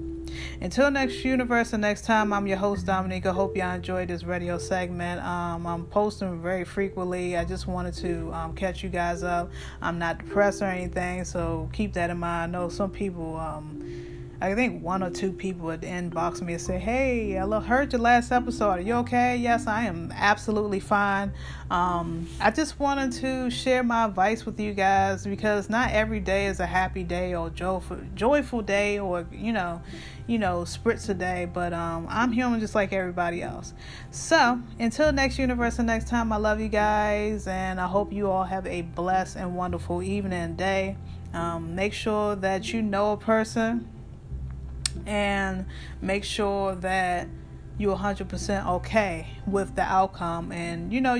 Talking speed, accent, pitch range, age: 180 wpm, American, 170-210 Hz, 20-39